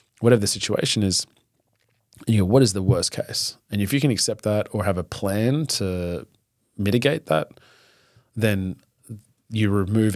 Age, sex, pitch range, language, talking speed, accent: 30-49, male, 90-110 Hz, English, 160 wpm, Australian